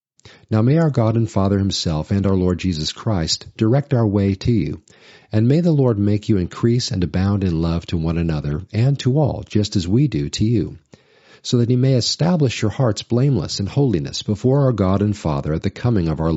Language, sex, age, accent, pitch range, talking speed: English, male, 50-69, American, 95-120 Hz, 220 wpm